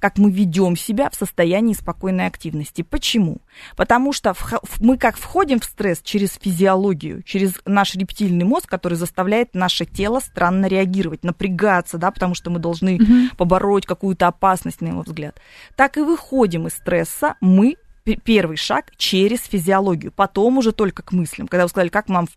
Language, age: Russian, 20-39